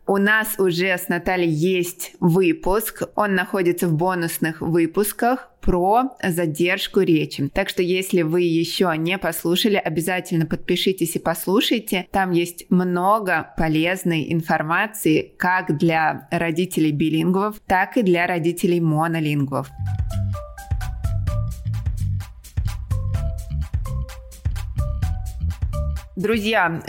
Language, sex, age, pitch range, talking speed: Russian, female, 20-39, 170-200 Hz, 90 wpm